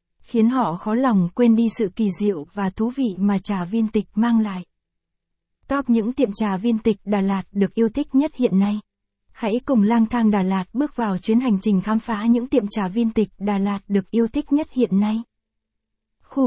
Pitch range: 200-235 Hz